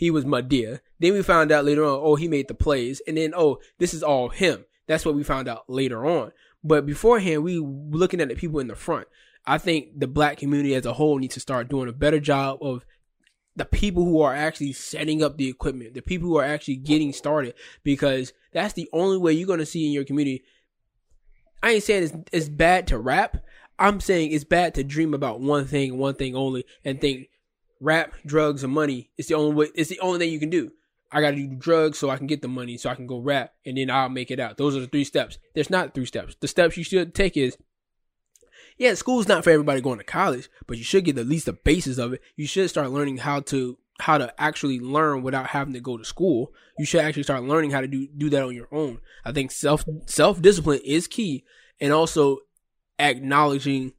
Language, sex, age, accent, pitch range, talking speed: English, male, 20-39, American, 135-160 Hz, 235 wpm